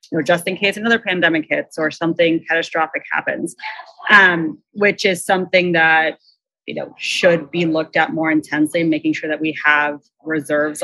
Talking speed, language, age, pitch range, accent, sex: 170 wpm, English, 30-49, 160-195 Hz, American, female